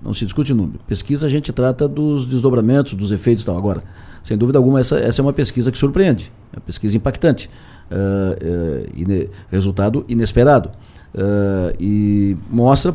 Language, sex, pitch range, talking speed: Portuguese, male, 105-140 Hz, 155 wpm